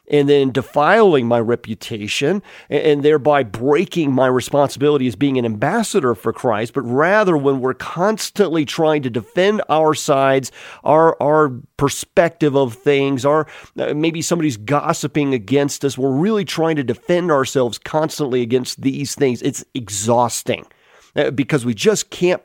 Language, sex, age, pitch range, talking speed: English, male, 40-59, 130-170 Hz, 140 wpm